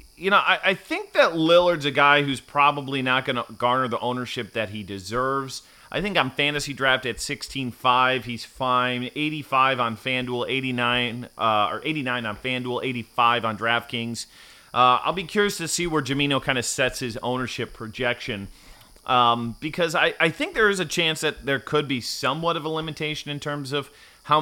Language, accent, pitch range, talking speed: English, American, 120-150 Hz, 185 wpm